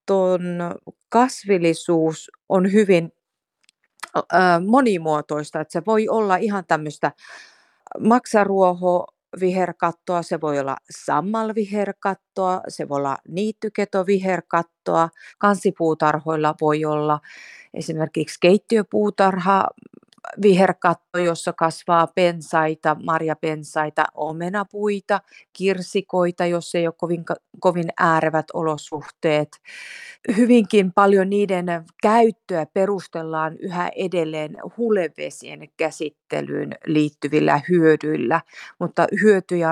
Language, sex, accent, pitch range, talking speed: Finnish, female, native, 155-200 Hz, 80 wpm